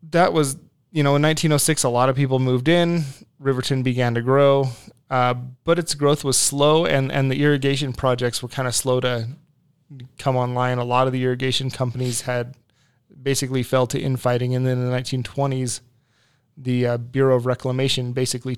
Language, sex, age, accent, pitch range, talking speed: English, male, 30-49, American, 125-135 Hz, 180 wpm